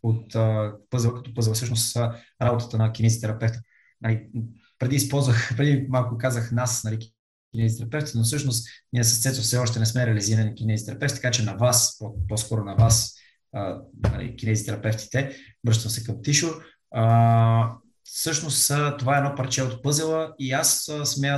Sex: male